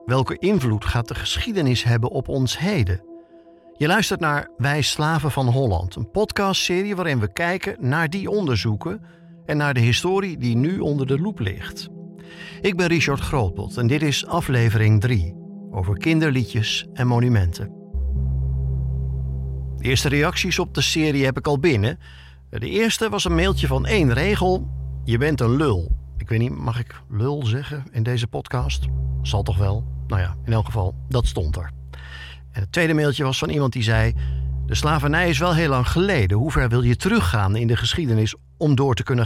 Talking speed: 180 wpm